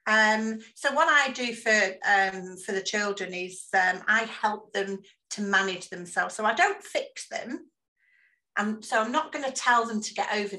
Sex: female